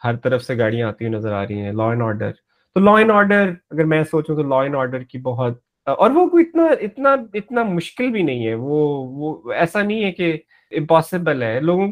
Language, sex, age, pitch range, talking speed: Urdu, male, 30-49, 125-185 Hz, 225 wpm